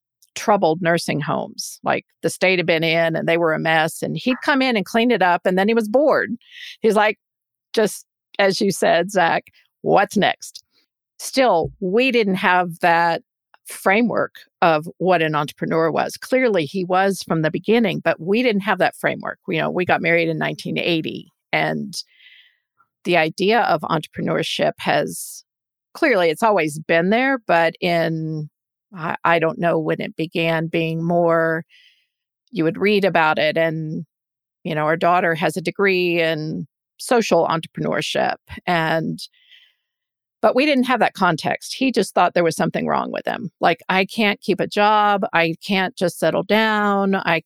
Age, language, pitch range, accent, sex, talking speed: 50-69, English, 165-215 Hz, American, female, 165 wpm